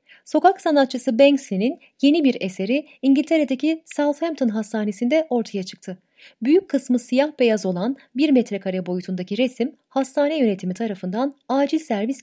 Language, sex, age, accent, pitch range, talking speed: Turkish, female, 30-49, native, 195-270 Hz, 120 wpm